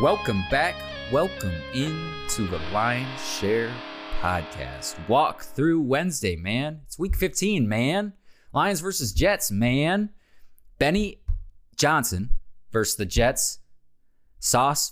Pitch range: 95-130 Hz